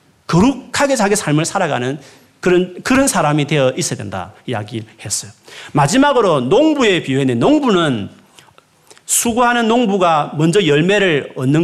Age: 40-59